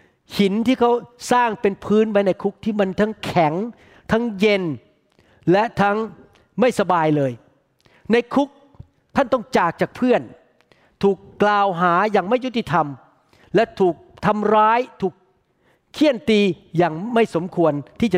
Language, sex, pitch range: Thai, male, 175-220 Hz